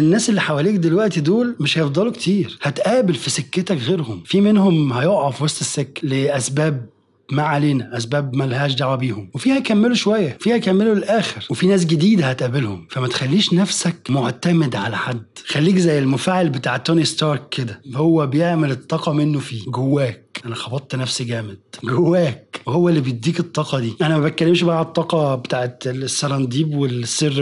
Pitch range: 135-175 Hz